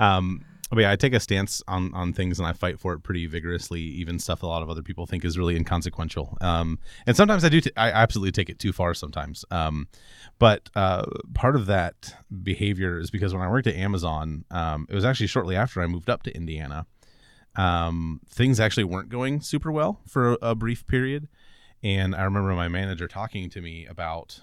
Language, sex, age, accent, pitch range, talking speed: English, male, 30-49, American, 85-110 Hz, 210 wpm